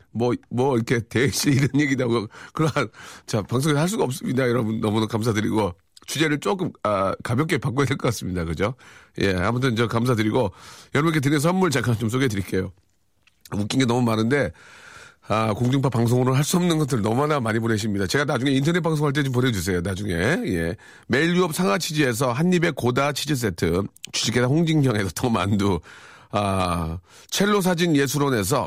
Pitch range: 110-155 Hz